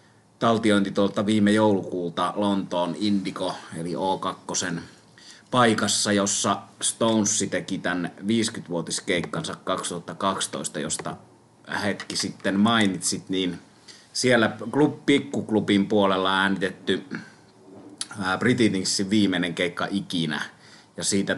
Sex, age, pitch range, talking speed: male, 30-49, 90-105 Hz, 90 wpm